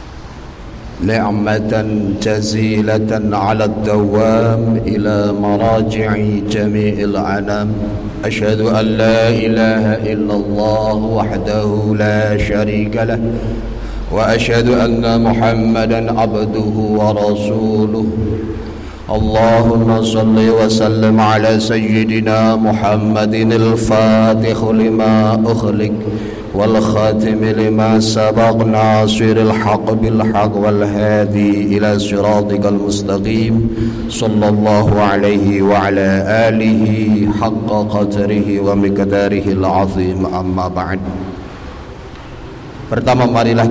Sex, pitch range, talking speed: male, 105-110 Hz, 50 wpm